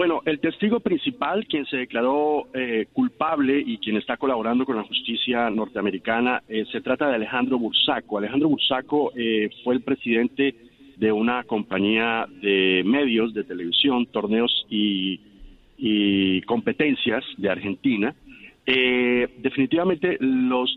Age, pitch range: 50-69, 105-130 Hz